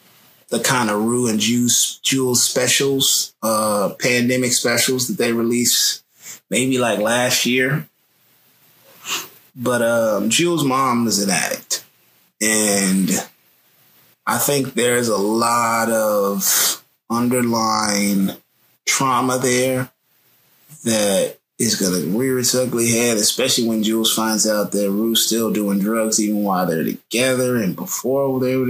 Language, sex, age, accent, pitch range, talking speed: English, male, 20-39, American, 110-125 Hz, 125 wpm